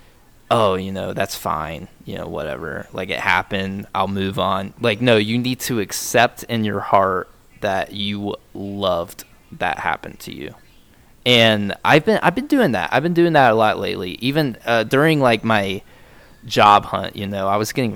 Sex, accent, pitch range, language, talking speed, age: male, American, 100-125 Hz, English, 185 wpm, 20-39